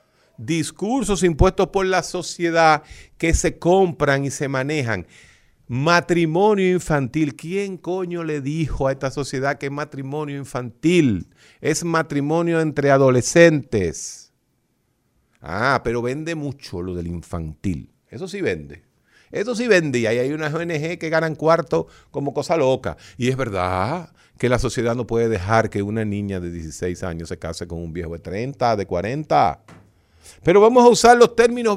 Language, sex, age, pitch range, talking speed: Spanish, male, 50-69, 110-175 Hz, 150 wpm